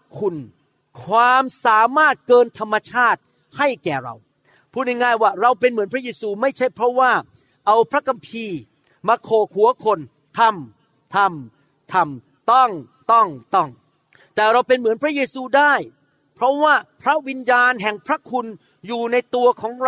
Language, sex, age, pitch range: Thai, male, 40-59, 170-255 Hz